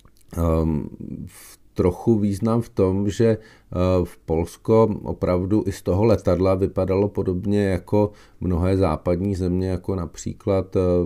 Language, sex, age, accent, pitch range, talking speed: Czech, male, 40-59, native, 90-100 Hz, 115 wpm